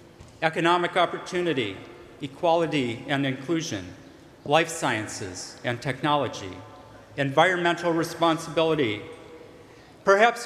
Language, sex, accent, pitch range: English, male, American, 135-185 Hz